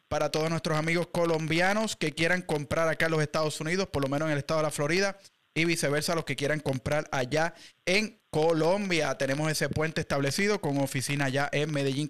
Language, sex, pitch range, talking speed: English, male, 145-175 Hz, 200 wpm